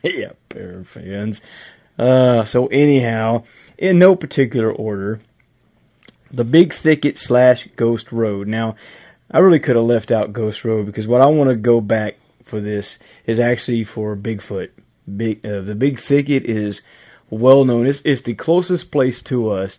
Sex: male